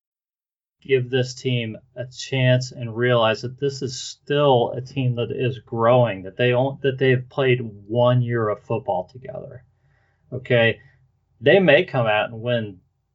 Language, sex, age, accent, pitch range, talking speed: English, male, 40-59, American, 120-135 Hz, 155 wpm